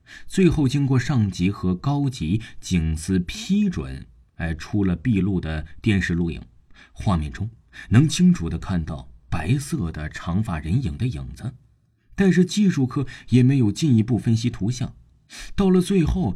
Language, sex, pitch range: Chinese, male, 85-130 Hz